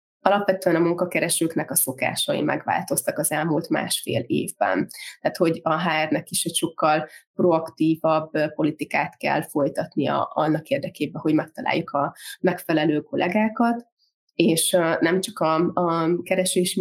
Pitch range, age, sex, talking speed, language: 165-180 Hz, 20-39, female, 120 wpm, Hungarian